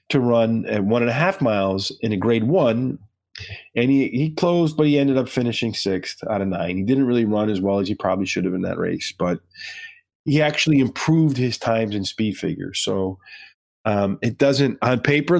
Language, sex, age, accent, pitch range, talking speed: English, male, 30-49, American, 110-150 Hz, 210 wpm